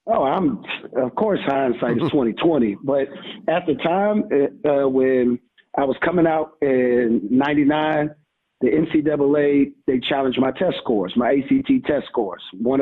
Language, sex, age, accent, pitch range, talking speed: English, male, 40-59, American, 125-150 Hz, 150 wpm